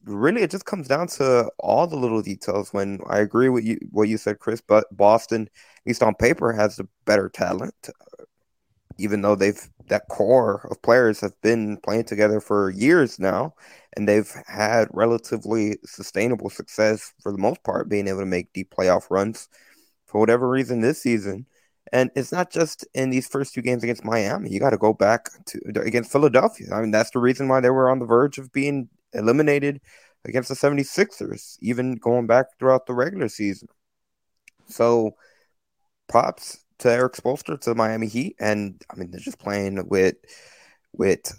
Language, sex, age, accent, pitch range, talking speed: English, male, 20-39, American, 105-130 Hz, 180 wpm